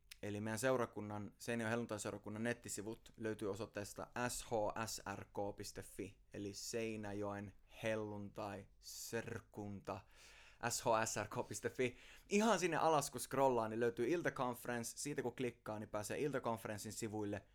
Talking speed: 105 wpm